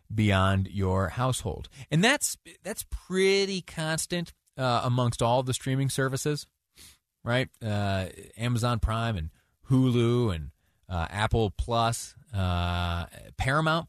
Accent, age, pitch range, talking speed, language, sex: American, 30-49, 95-135 Hz, 110 wpm, English, male